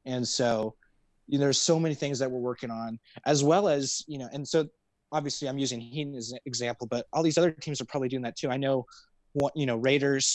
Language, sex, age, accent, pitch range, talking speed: English, male, 20-39, American, 115-135 Hz, 245 wpm